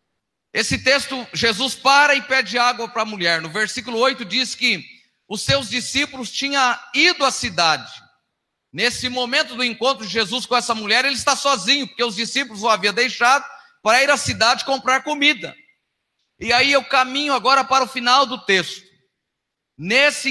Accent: Brazilian